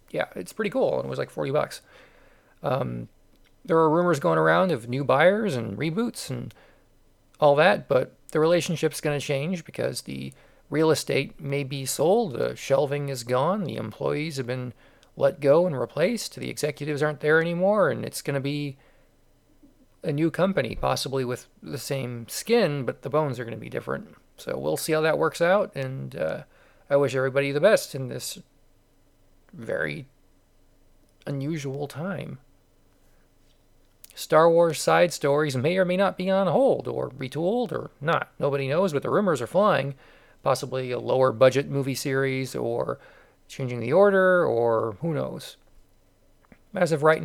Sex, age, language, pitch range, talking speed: male, 40-59, English, 135-165 Hz, 165 wpm